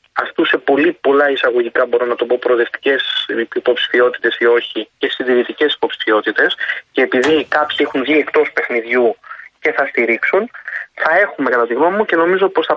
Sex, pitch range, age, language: male, 125-185 Hz, 20-39, Greek